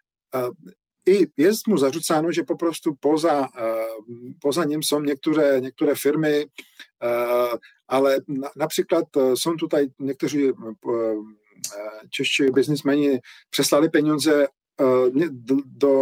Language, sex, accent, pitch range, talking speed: Polish, male, Czech, 125-160 Hz, 80 wpm